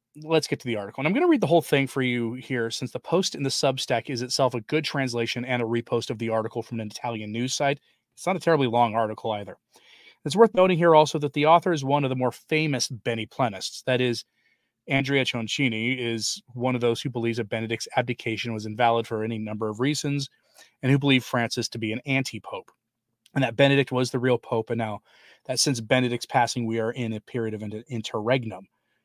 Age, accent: 30-49, American